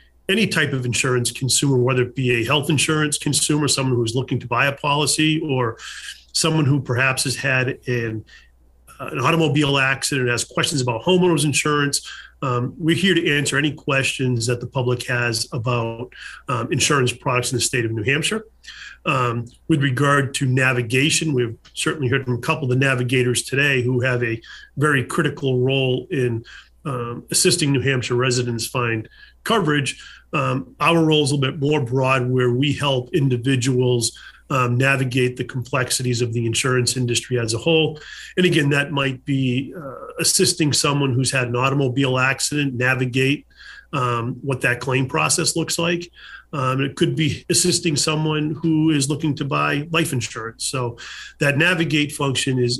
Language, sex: English, male